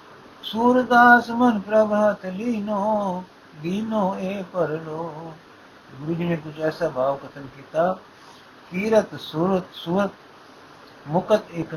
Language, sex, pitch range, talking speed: Punjabi, male, 155-195 Hz, 115 wpm